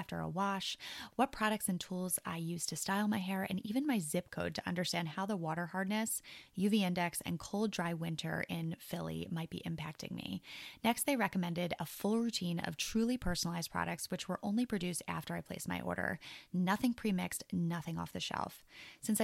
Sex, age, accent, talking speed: female, 20-39, American, 195 wpm